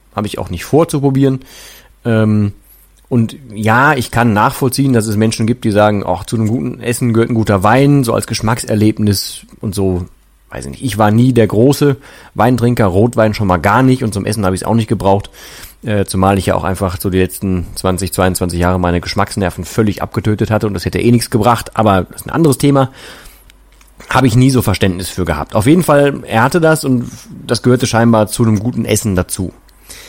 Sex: male